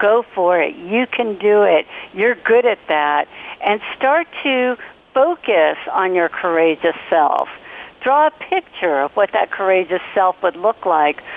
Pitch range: 180-235 Hz